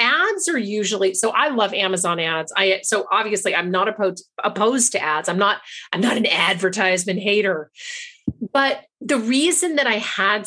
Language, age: English, 40-59